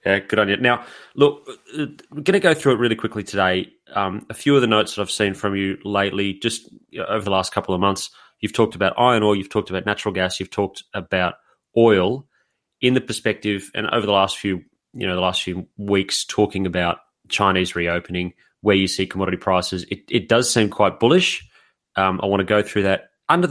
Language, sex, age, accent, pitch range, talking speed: English, male, 30-49, Australian, 95-110 Hz, 215 wpm